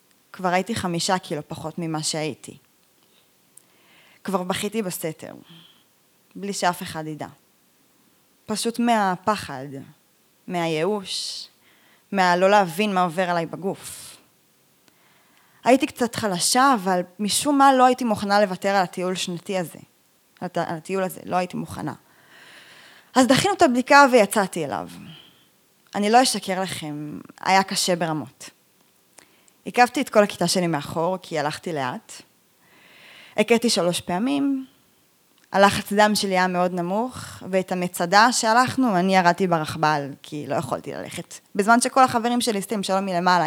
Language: Hebrew